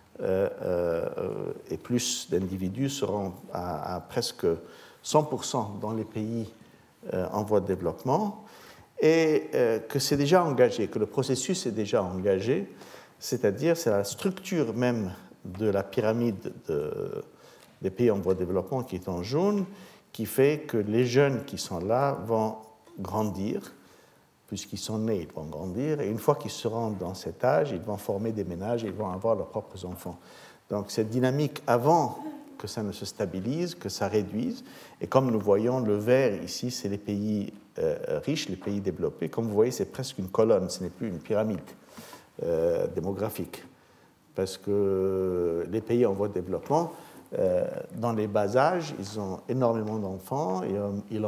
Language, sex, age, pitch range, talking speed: French, male, 60-79, 100-150 Hz, 175 wpm